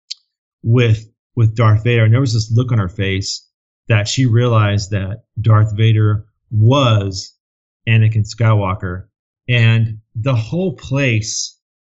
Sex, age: male, 40-59